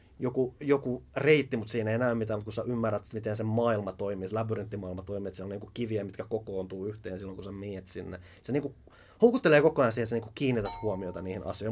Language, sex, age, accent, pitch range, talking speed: Finnish, male, 30-49, native, 100-125 Hz, 230 wpm